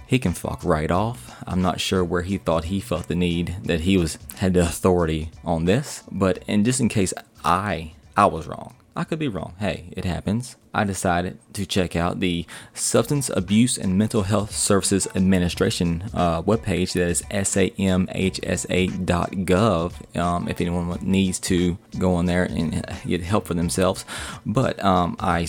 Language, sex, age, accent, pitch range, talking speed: English, male, 20-39, American, 85-100 Hz, 180 wpm